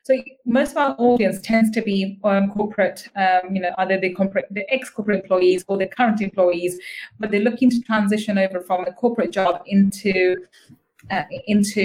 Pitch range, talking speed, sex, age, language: 195-250 Hz, 165 wpm, female, 30-49, English